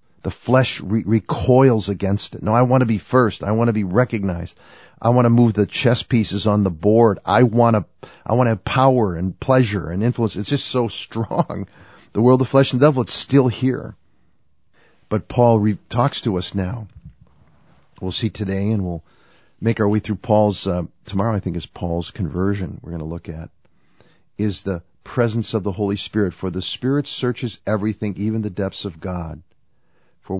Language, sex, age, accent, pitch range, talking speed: English, male, 50-69, American, 95-120 Hz, 195 wpm